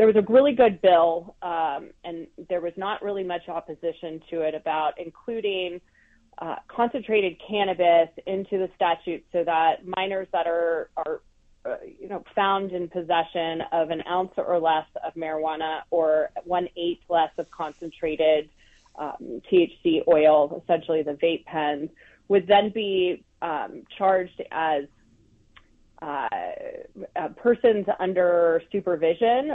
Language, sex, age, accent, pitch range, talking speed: English, female, 30-49, American, 165-205 Hz, 135 wpm